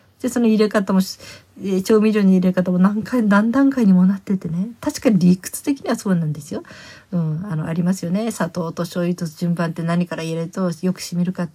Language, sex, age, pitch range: Japanese, female, 40-59, 155-205 Hz